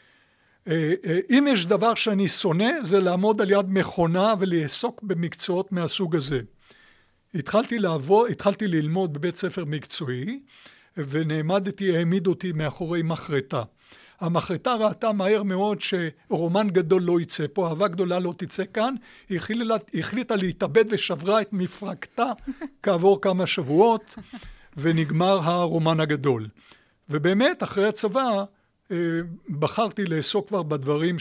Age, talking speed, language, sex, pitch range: 60-79, 115 wpm, Hebrew, male, 160-205 Hz